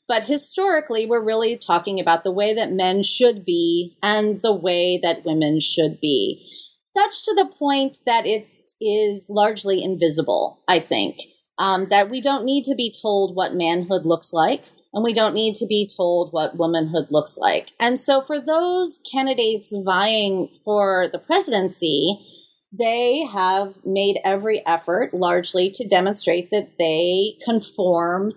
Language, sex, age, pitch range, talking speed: English, female, 30-49, 180-240 Hz, 155 wpm